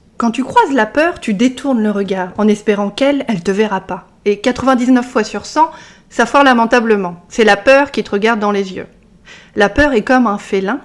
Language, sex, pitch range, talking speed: French, female, 205-255 Hz, 220 wpm